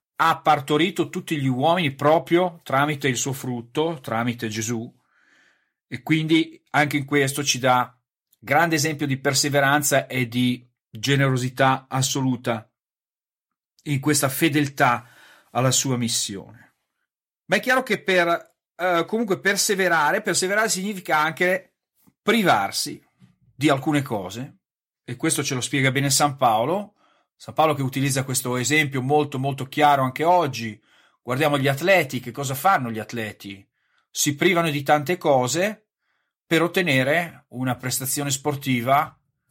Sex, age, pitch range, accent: male, 40-59, 130-160 Hz, native